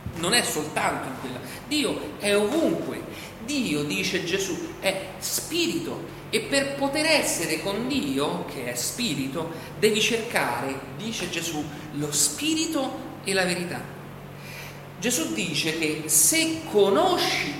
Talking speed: 125 wpm